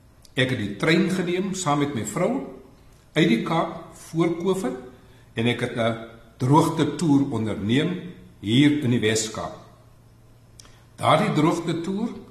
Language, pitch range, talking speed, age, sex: Swedish, 110-155 Hz, 130 wpm, 60-79, male